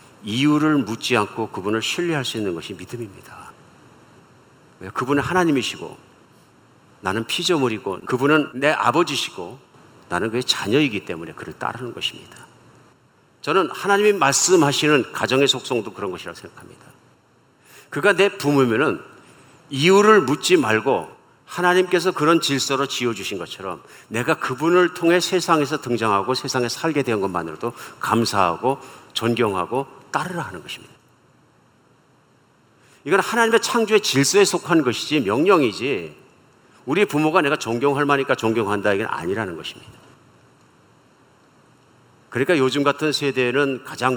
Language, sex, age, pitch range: Korean, male, 50-69, 120-155 Hz